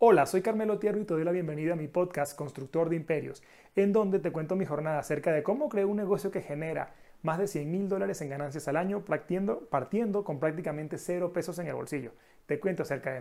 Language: Spanish